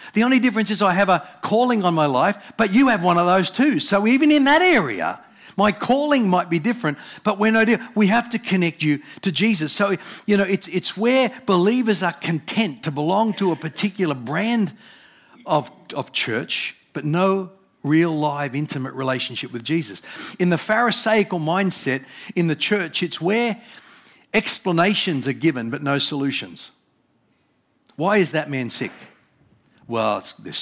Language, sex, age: English, male, 50-69